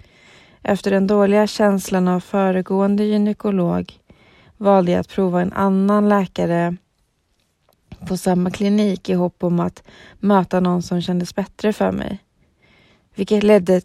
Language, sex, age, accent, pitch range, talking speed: Swedish, female, 20-39, native, 175-205 Hz, 130 wpm